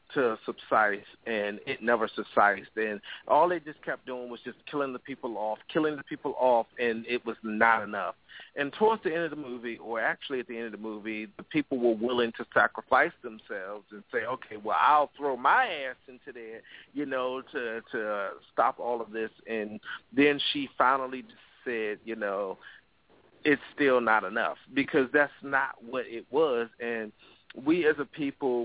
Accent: American